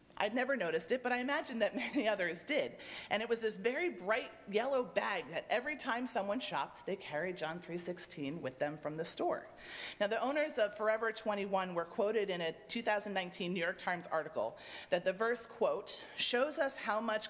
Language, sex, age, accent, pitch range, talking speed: English, female, 30-49, American, 190-255 Hz, 195 wpm